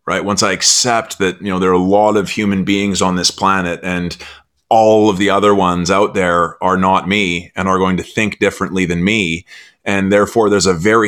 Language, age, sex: English, 30-49, male